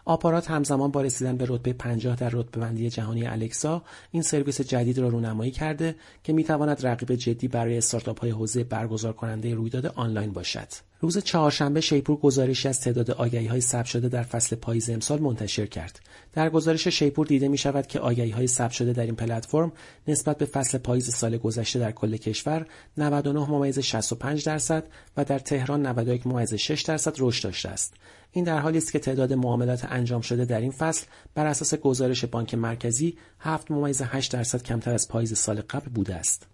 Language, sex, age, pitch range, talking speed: Persian, male, 40-59, 115-145 Hz, 165 wpm